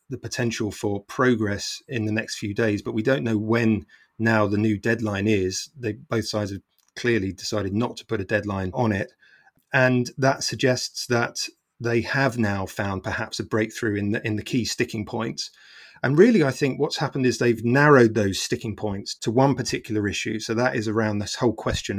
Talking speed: 200 wpm